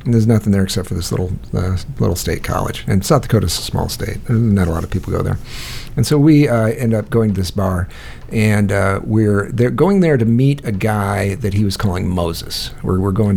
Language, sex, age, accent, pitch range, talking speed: English, male, 50-69, American, 95-115 Hz, 240 wpm